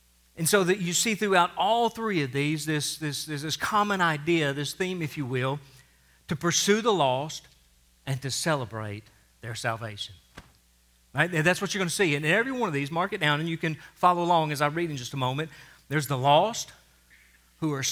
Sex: male